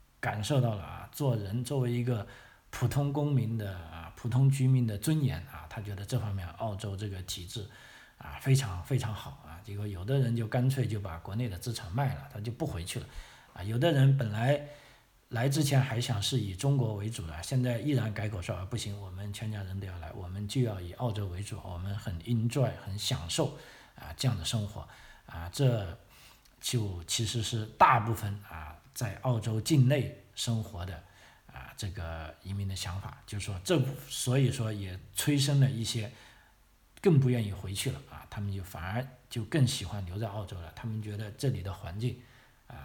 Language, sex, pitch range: Chinese, male, 100-125 Hz